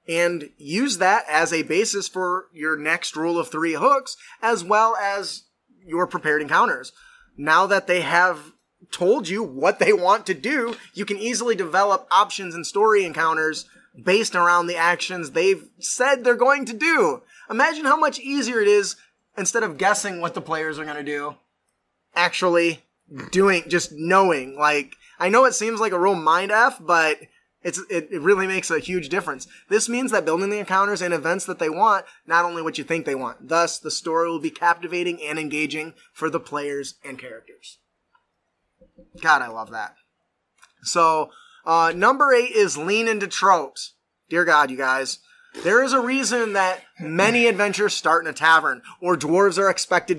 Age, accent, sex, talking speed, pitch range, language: 20-39, American, male, 175 wpm, 165-220 Hz, English